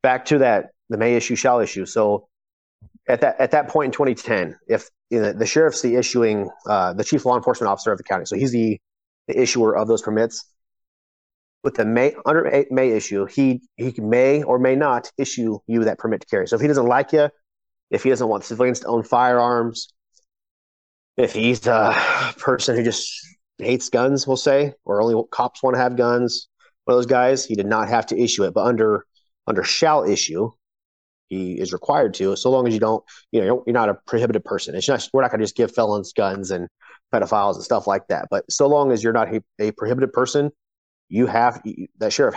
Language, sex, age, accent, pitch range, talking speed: English, male, 30-49, American, 110-130 Hz, 215 wpm